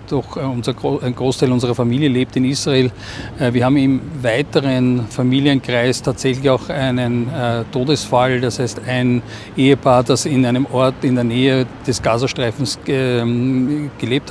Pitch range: 120-135 Hz